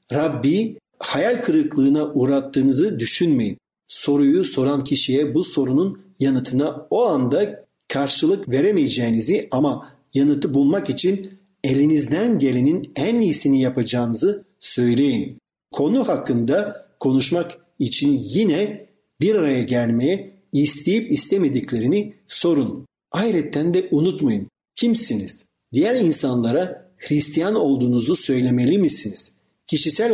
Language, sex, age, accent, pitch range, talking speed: Turkish, male, 50-69, native, 135-195 Hz, 95 wpm